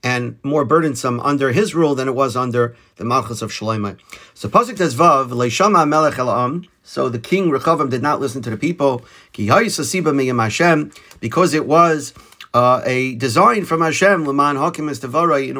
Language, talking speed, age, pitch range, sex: English, 130 wpm, 50-69, 120-155 Hz, male